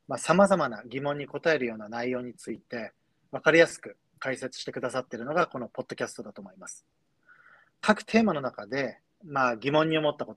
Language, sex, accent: Japanese, male, native